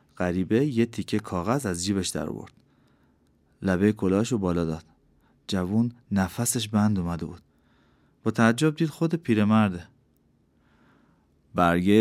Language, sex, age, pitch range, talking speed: Persian, male, 30-49, 95-120 Hz, 115 wpm